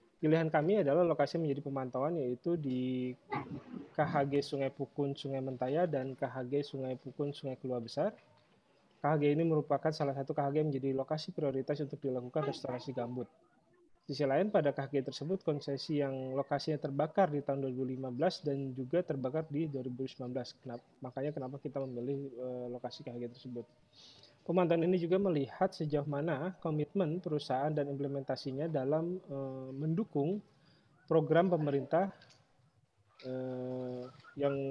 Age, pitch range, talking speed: 20-39, 130-155 Hz, 125 wpm